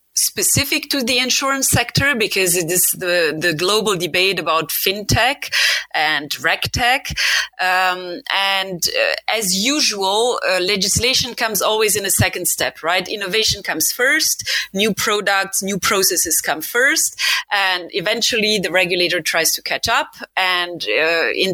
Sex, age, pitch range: female, 30-49, 160-215 Hz